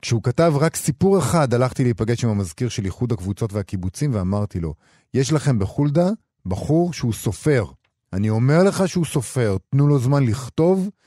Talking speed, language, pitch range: 165 wpm, Hebrew, 95-130 Hz